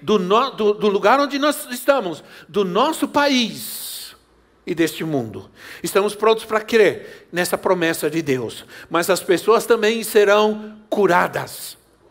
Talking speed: 135 wpm